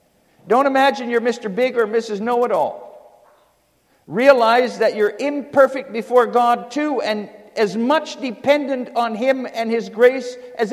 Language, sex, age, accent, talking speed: English, male, 50-69, American, 145 wpm